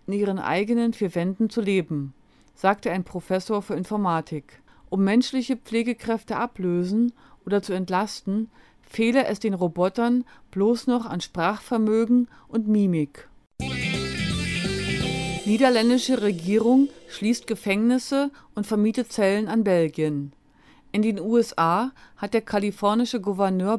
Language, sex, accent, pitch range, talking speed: German, female, German, 190-235 Hz, 115 wpm